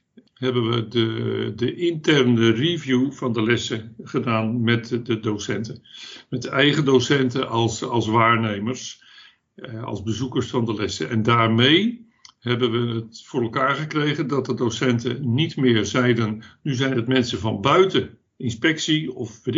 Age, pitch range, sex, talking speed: 60-79, 120-150 Hz, male, 150 wpm